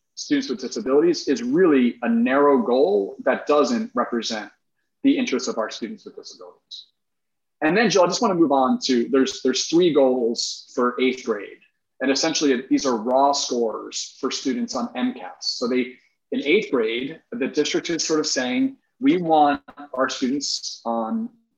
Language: English